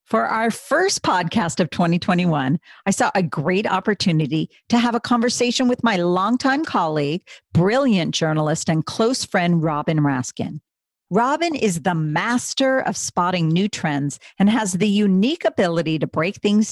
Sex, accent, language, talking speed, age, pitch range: female, American, English, 150 wpm, 50-69, 170-230 Hz